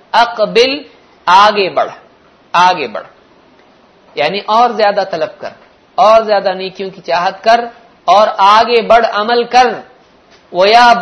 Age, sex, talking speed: 50-69, male, 120 wpm